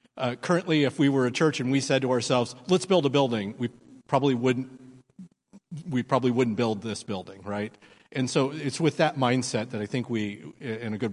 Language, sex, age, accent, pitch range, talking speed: English, male, 50-69, American, 110-135 Hz, 210 wpm